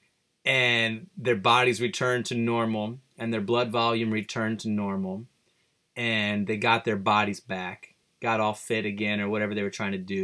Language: English